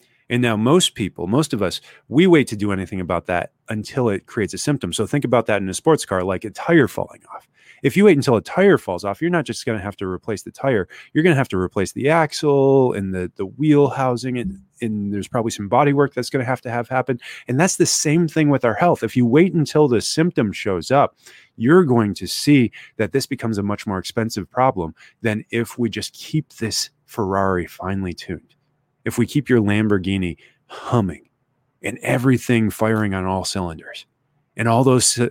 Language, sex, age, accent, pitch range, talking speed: English, male, 30-49, American, 105-145 Hz, 220 wpm